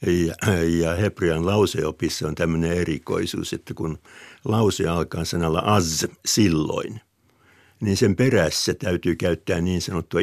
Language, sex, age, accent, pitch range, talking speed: Finnish, male, 60-79, native, 85-105 Hz, 115 wpm